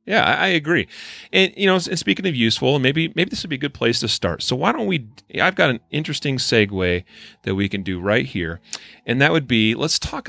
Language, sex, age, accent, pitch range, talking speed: English, male, 30-49, American, 100-125 Hz, 240 wpm